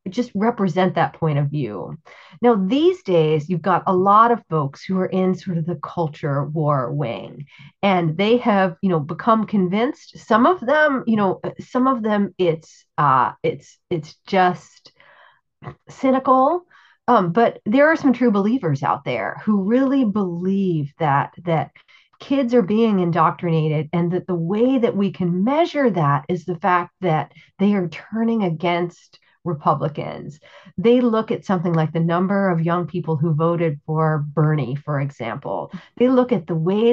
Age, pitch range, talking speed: 40-59, 165-230 Hz, 165 wpm